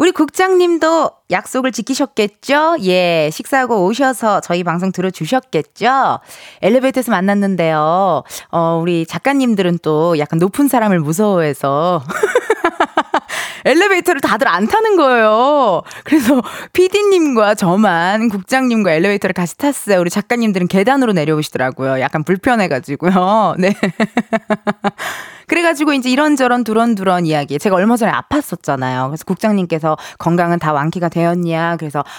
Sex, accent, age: female, native, 20-39